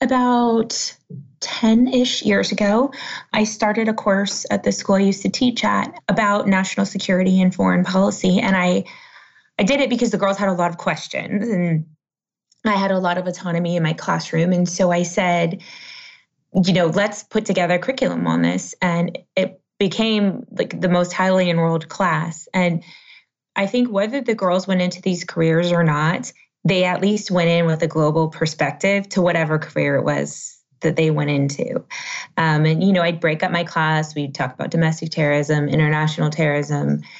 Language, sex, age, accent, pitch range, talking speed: English, female, 20-39, American, 160-200 Hz, 180 wpm